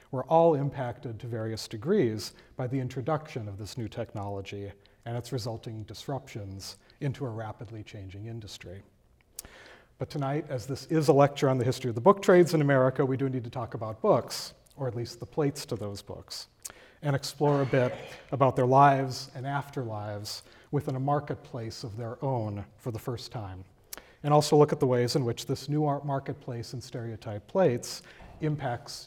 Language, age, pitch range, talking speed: English, 40-59, 115-145 Hz, 180 wpm